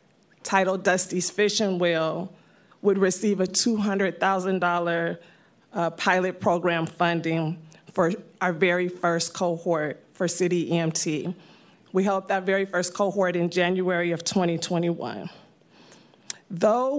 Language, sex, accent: English, female, American